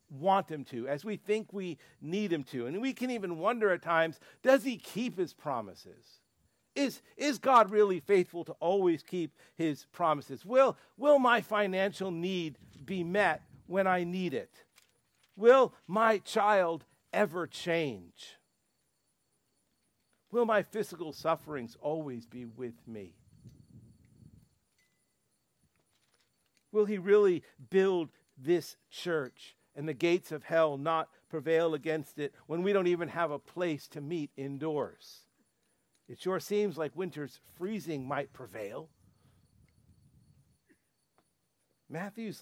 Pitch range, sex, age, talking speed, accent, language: 140-195 Hz, male, 50-69, 125 wpm, American, English